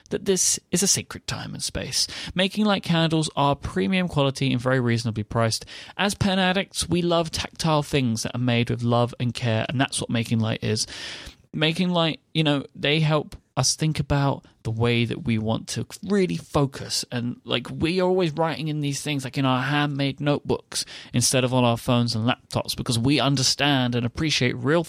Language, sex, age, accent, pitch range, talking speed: English, male, 30-49, British, 120-150 Hz, 200 wpm